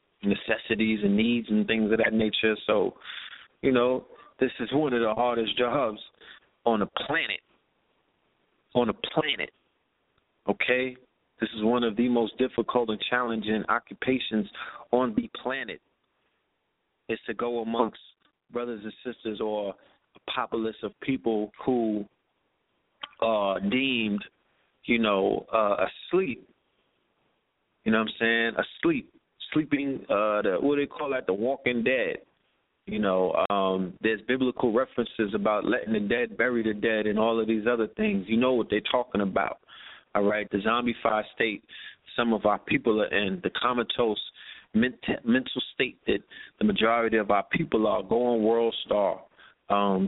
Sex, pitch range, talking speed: male, 110-125 Hz, 150 wpm